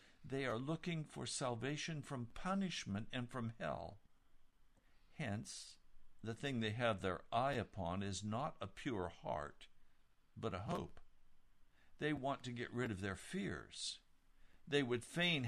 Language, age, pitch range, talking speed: English, 60-79, 115-155 Hz, 145 wpm